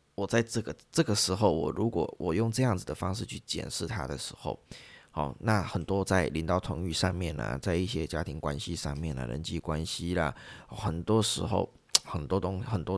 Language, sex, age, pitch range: Chinese, male, 20-39, 80-105 Hz